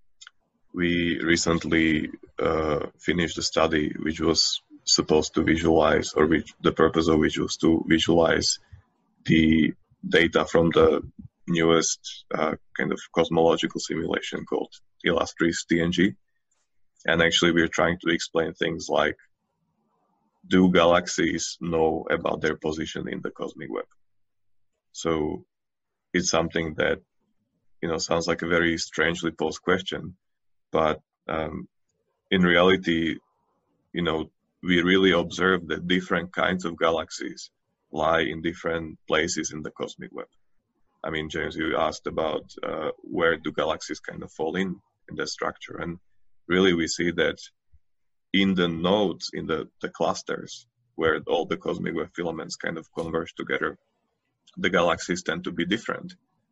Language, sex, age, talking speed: English, male, 20-39, 140 wpm